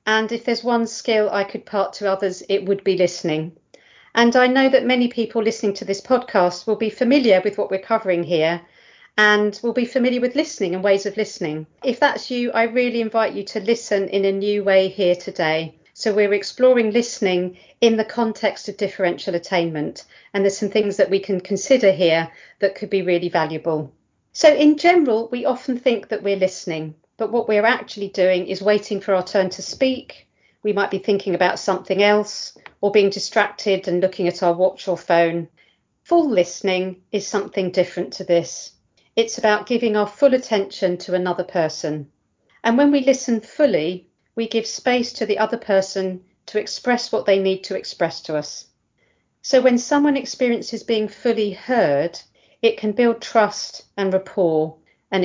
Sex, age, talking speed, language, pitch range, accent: female, 40-59, 185 wpm, English, 185-230 Hz, British